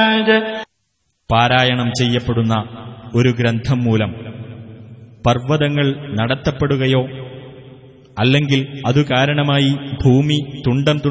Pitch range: 110-125 Hz